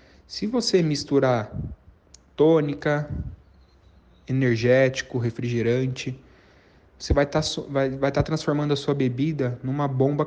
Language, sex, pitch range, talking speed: Portuguese, male, 120-150 Hz, 110 wpm